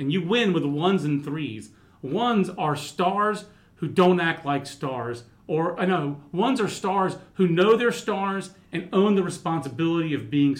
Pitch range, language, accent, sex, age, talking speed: 145-185 Hz, English, American, male, 40-59, 175 wpm